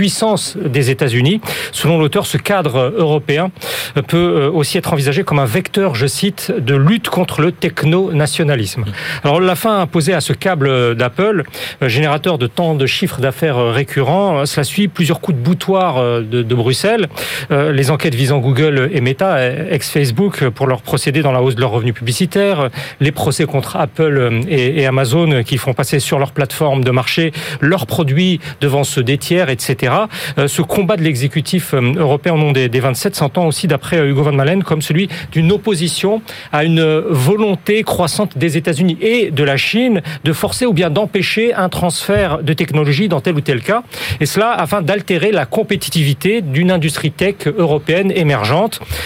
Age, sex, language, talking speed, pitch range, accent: 40-59, male, French, 170 wpm, 140-185 Hz, French